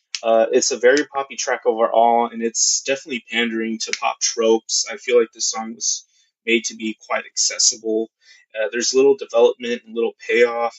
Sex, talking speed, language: male, 180 wpm, English